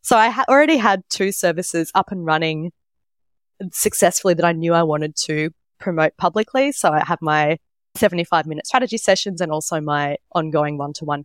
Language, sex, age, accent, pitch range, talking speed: English, female, 20-39, Australian, 155-200 Hz, 160 wpm